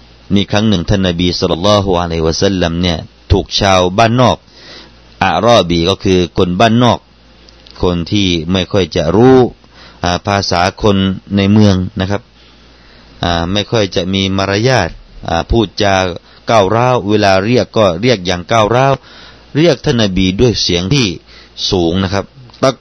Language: Thai